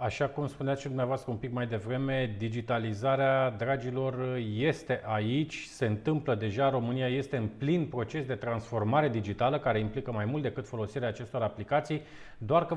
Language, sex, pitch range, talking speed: Romanian, male, 120-150 Hz, 160 wpm